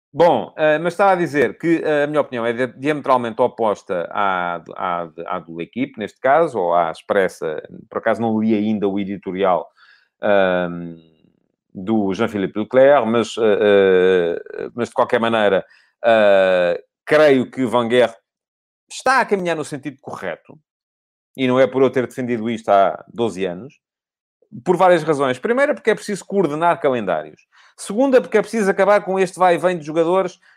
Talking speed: 155 wpm